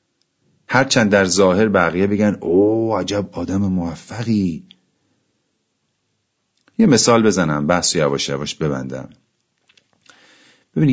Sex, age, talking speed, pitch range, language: male, 40-59, 100 wpm, 85-110 Hz, Persian